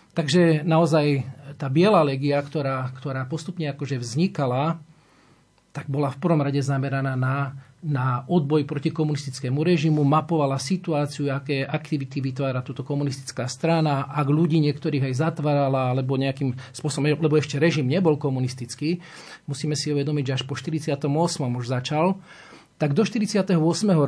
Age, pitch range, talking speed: 40-59, 135-160 Hz, 135 wpm